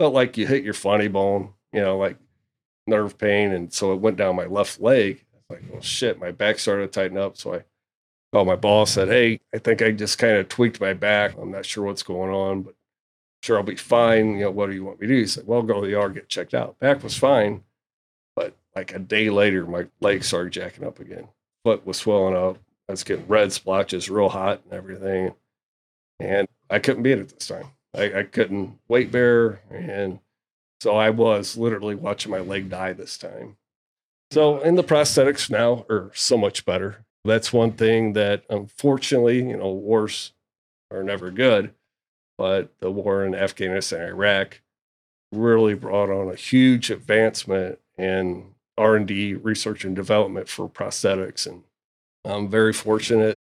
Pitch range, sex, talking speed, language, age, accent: 95-115 Hz, male, 190 wpm, English, 40-59, American